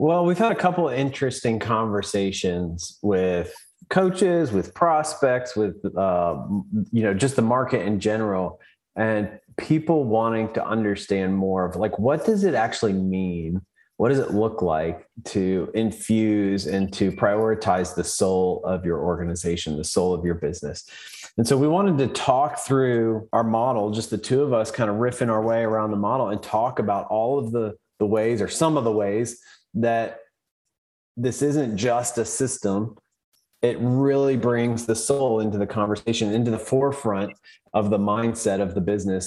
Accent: American